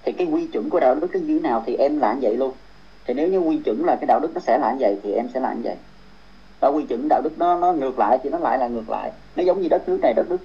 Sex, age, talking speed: male, 30-49, 320 wpm